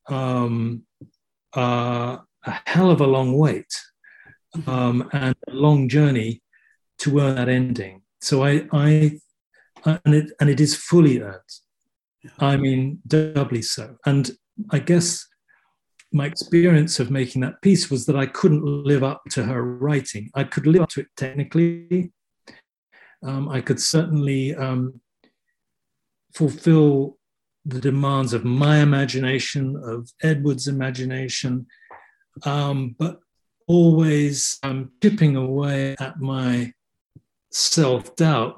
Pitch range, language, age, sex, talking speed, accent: 125-150 Hz, English, 40-59, male, 125 wpm, British